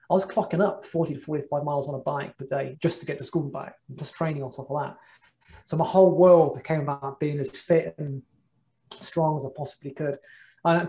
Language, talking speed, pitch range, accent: English, 230 wpm, 140-165 Hz, British